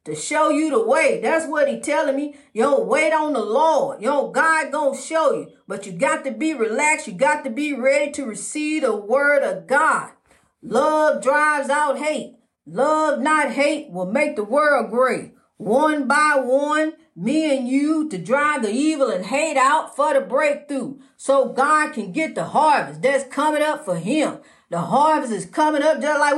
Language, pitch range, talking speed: English, 265-300 Hz, 200 wpm